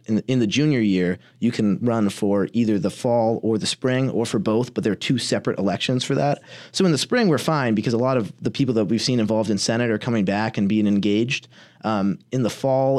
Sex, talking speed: male, 245 wpm